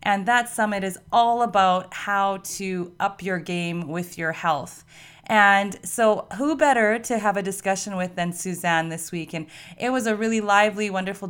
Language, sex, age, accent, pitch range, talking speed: English, female, 30-49, American, 175-210 Hz, 180 wpm